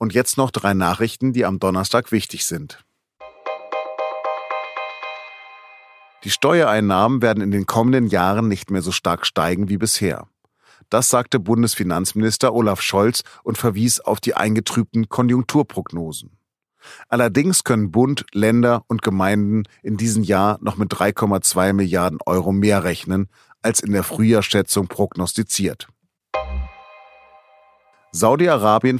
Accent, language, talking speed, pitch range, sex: German, German, 120 wpm, 95-120 Hz, male